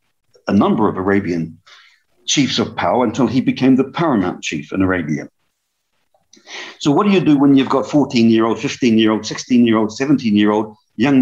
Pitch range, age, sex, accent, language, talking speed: 105-155 Hz, 50-69, male, British, English, 195 wpm